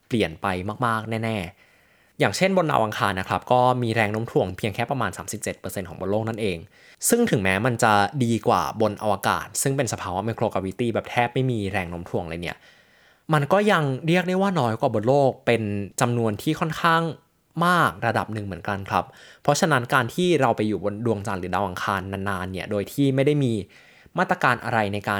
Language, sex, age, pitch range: Thai, male, 20-39, 100-140 Hz